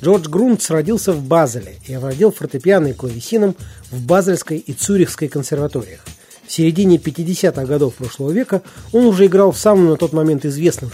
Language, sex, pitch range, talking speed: Russian, male, 135-190 Hz, 160 wpm